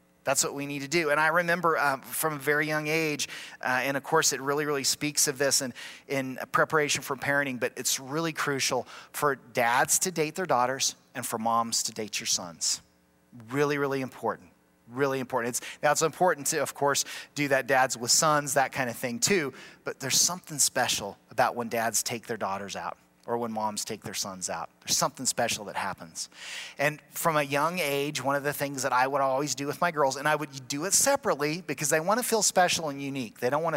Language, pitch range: English, 130-165 Hz